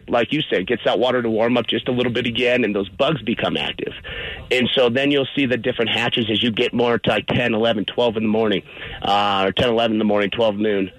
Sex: male